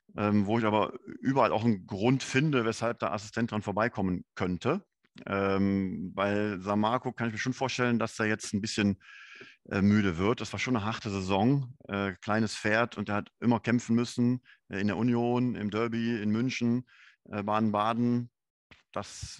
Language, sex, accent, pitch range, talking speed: German, male, German, 105-120 Hz, 180 wpm